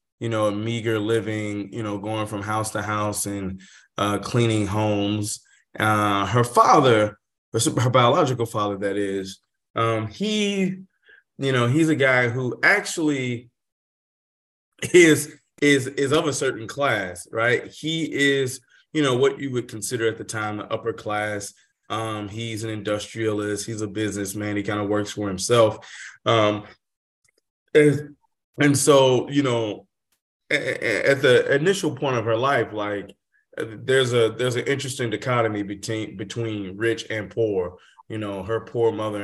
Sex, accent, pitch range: male, American, 105-130 Hz